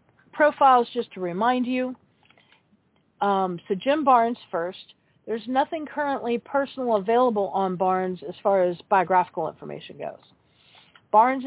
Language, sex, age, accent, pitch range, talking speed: English, female, 50-69, American, 195-250 Hz, 125 wpm